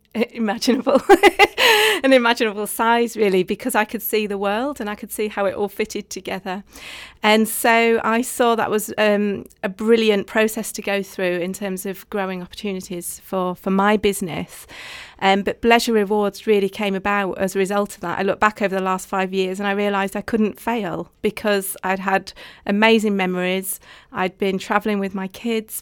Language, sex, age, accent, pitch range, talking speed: English, female, 30-49, British, 195-220 Hz, 185 wpm